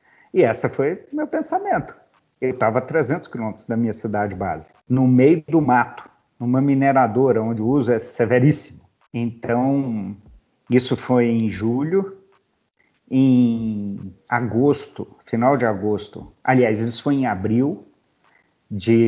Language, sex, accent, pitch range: Portuguese, male, Brazilian, 115-165 Hz